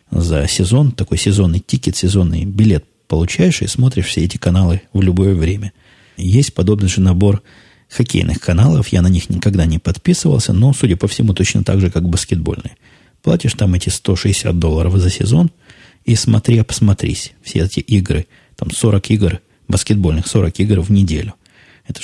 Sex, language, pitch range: male, Russian, 85-110 Hz